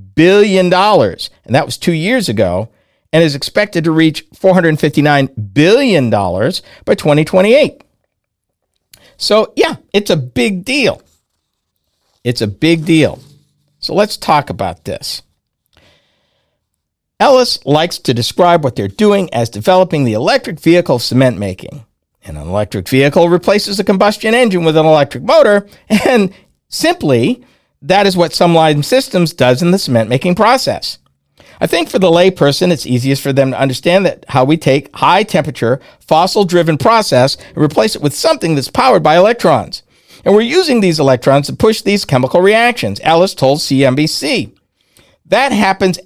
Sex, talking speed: male, 145 wpm